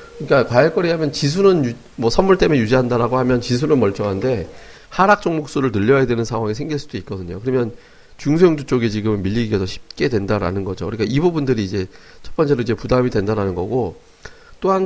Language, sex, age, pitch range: Korean, male, 40-59, 110-150 Hz